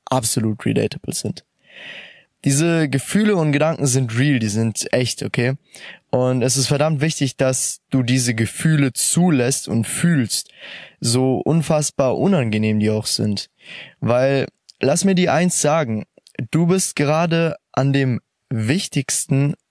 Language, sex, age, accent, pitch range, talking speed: German, male, 20-39, German, 125-160 Hz, 130 wpm